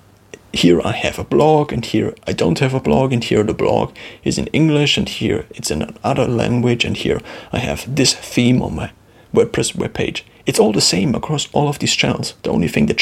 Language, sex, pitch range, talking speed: English, male, 100-130 Hz, 225 wpm